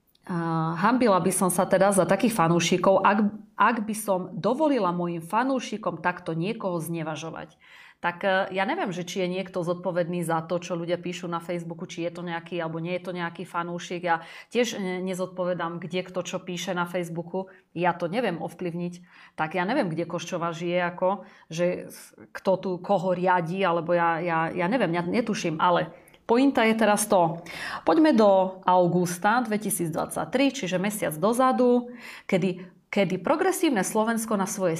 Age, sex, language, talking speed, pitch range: 30-49, female, Slovak, 165 wpm, 175-210 Hz